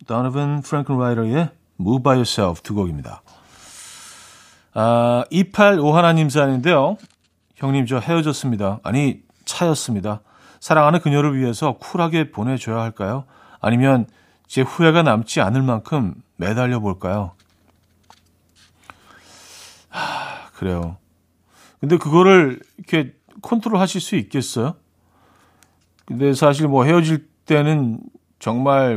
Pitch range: 105-150 Hz